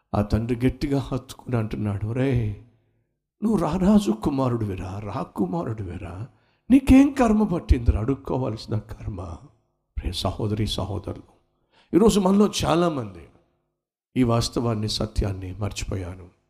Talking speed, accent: 100 wpm, native